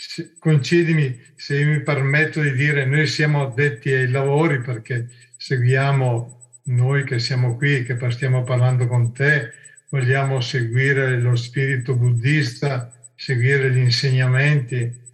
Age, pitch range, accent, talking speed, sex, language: 50-69, 130-155 Hz, native, 125 wpm, male, Italian